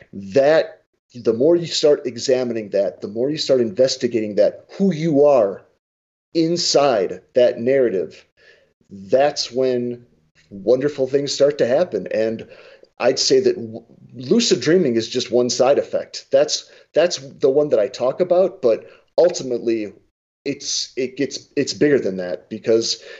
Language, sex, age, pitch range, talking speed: English, male, 40-59, 120-195 Hz, 145 wpm